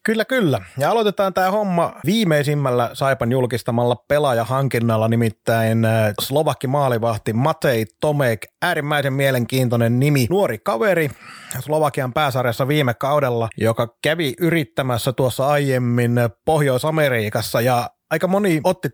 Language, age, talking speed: Finnish, 30-49, 110 wpm